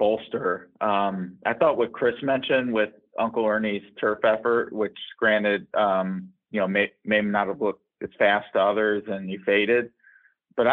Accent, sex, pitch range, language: American, male, 100-115 Hz, English